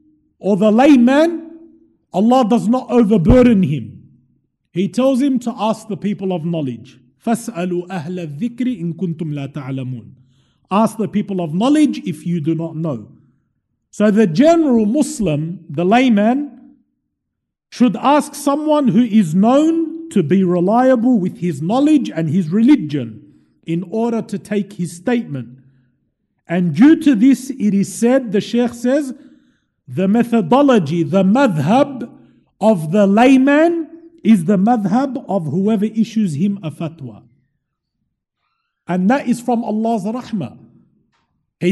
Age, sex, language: 50-69, male, English